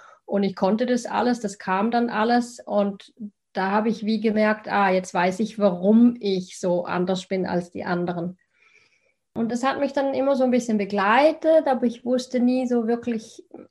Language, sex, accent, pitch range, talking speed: German, female, German, 195-235 Hz, 190 wpm